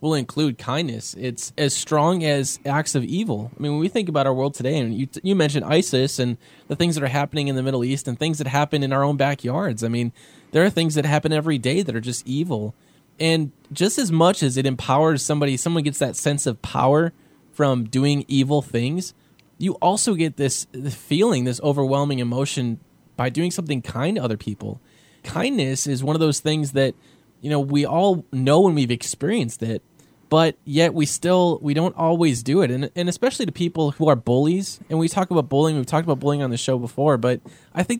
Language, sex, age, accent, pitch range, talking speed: English, male, 20-39, American, 130-160 Hz, 220 wpm